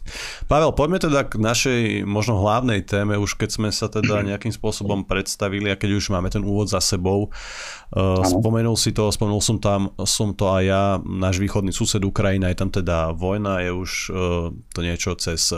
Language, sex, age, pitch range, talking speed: Slovak, male, 30-49, 90-105 Hz, 180 wpm